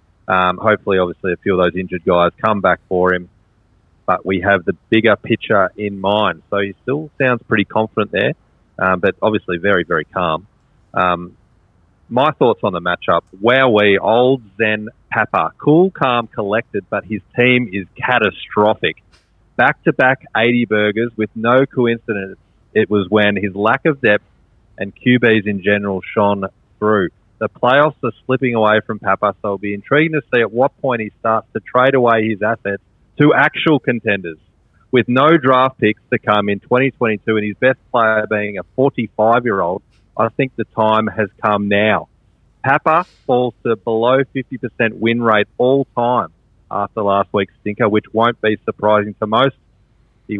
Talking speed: 165 wpm